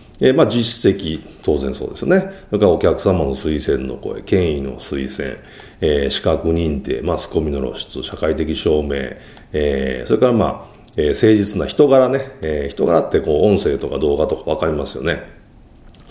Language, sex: Japanese, male